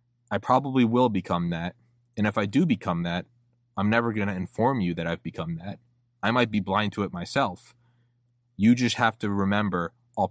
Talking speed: 190 wpm